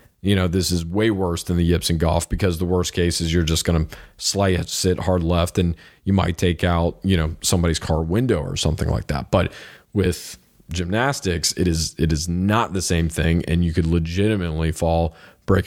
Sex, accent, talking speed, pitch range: male, American, 210 wpm, 85-100 Hz